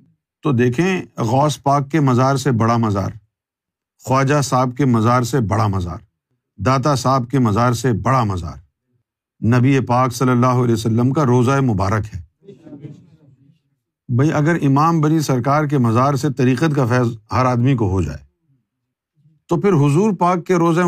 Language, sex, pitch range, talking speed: Urdu, male, 120-150 Hz, 160 wpm